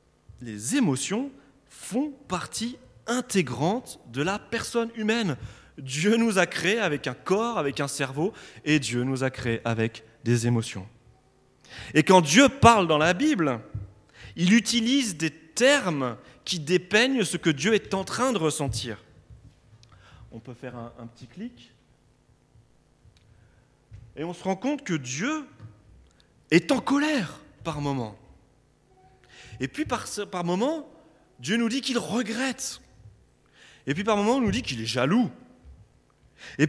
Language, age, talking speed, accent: French, 30-49, 145 wpm, French